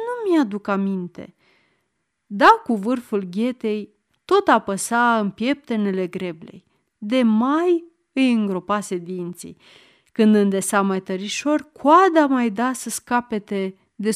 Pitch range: 195-305 Hz